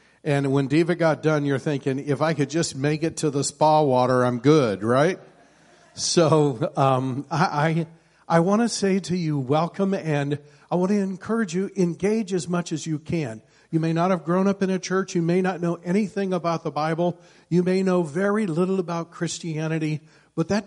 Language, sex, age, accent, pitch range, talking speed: English, male, 50-69, American, 145-180 Hz, 195 wpm